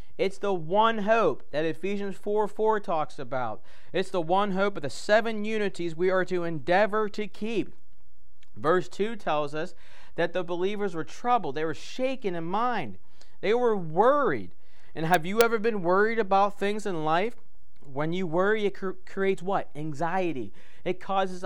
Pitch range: 155-200 Hz